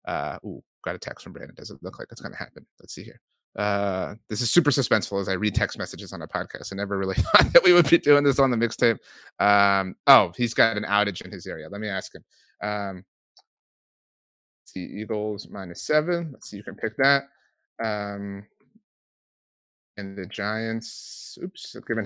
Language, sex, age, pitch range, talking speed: English, male, 30-49, 100-115 Hz, 205 wpm